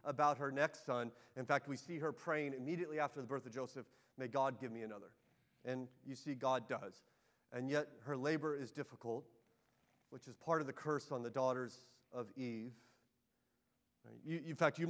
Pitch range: 115-140 Hz